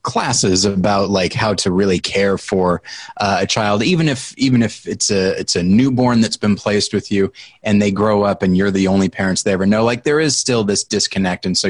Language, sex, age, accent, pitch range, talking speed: English, male, 30-49, American, 100-125 Hz, 230 wpm